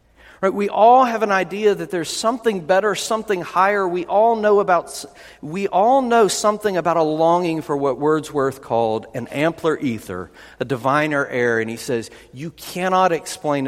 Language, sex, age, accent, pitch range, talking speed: English, male, 50-69, American, 140-205 Hz, 155 wpm